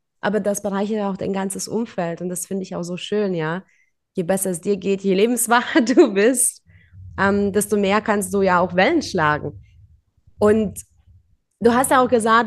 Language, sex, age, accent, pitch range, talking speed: German, female, 20-39, German, 195-240 Hz, 190 wpm